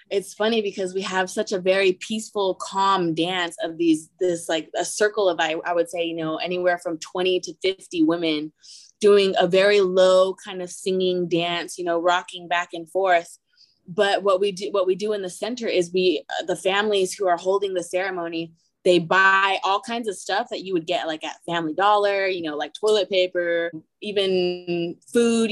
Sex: female